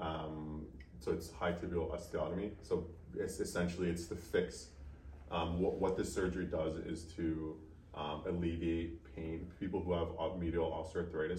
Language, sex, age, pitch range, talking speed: English, male, 20-39, 75-85 Hz, 150 wpm